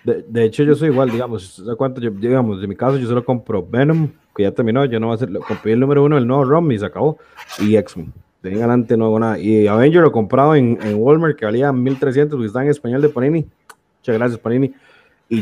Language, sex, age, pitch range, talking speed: Spanish, male, 30-49, 115-145 Hz, 255 wpm